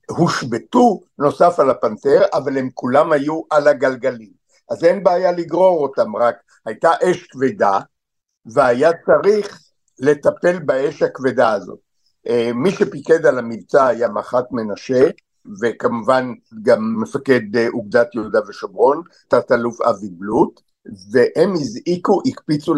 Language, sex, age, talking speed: Hebrew, male, 60-79, 115 wpm